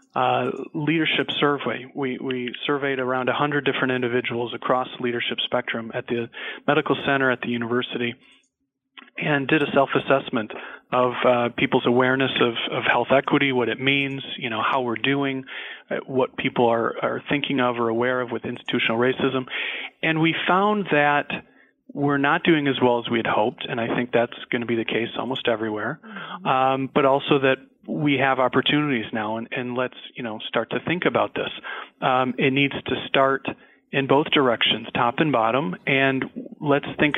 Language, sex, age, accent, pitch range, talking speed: English, male, 40-59, American, 120-145 Hz, 175 wpm